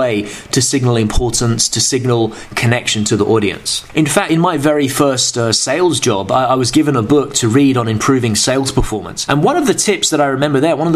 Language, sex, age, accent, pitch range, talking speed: English, male, 20-39, British, 120-155 Hz, 225 wpm